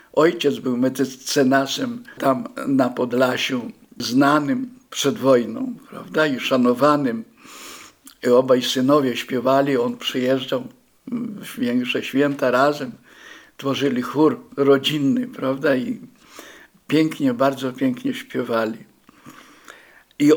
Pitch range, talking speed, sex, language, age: 140-235 Hz, 90 wpm, male, Polish, 60-79